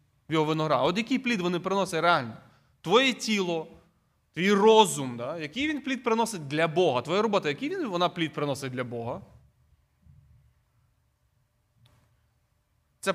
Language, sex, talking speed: Ukrainian, male, 130 wpm